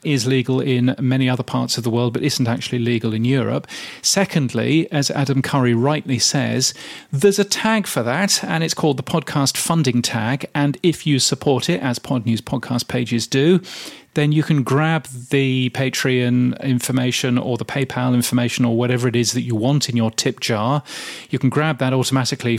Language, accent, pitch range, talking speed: English, British, 125-145 Hz, 185 wpm